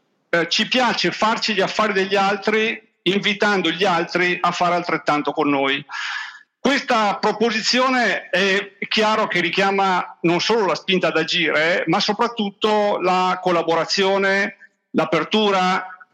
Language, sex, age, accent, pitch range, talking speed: Italian, male, 50-69, native, 170-210 Hz, 125 wpm